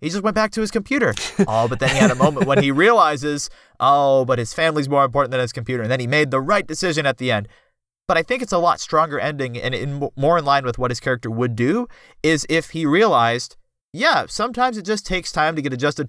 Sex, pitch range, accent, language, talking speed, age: male, 120-160 Hz, American, English, 255 wpm, 30-49